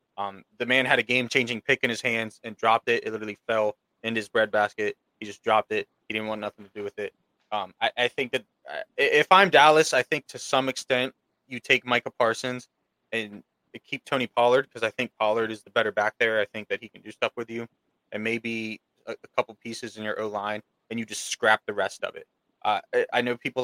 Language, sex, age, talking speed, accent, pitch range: English, male, 20-39, 235 wpm, American, 110-130 Hz